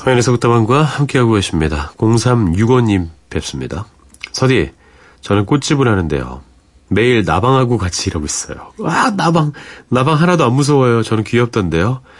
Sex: male